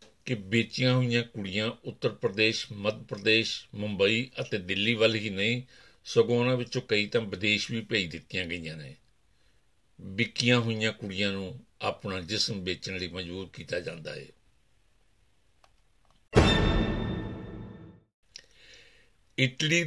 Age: 60-79